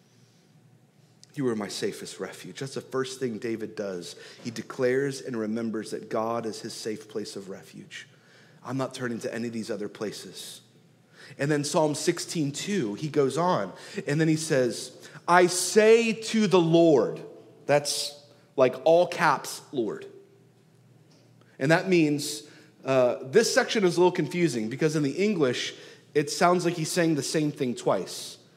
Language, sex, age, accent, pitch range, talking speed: English, male, 30-49, American, 140-180 Hz, 160 wpm